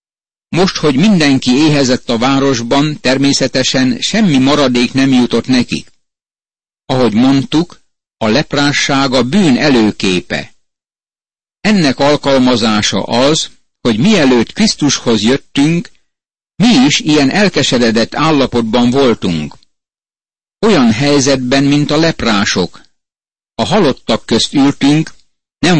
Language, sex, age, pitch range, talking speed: Hungarian, male, 60-79, 120-145 Hz, 95 wpm